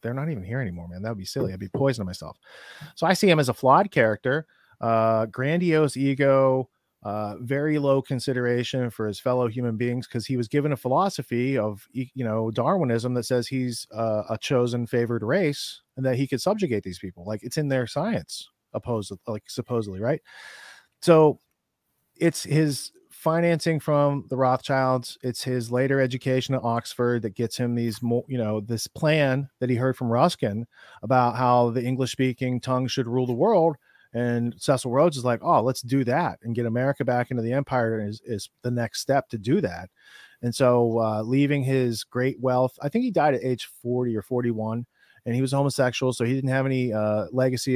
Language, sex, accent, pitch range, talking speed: English, male, American, 120-135 Hz, 195 wpm